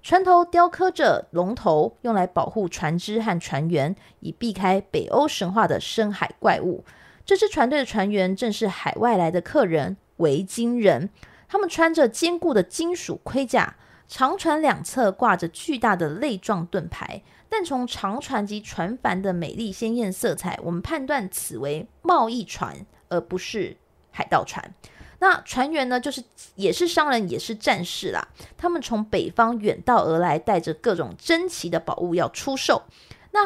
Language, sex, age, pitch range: Chinese, female, 20-39, 180-275 Hz